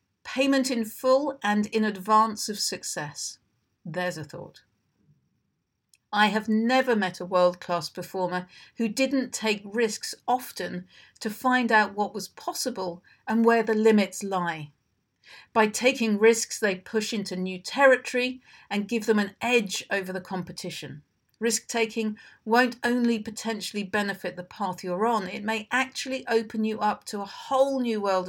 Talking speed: 150 wpm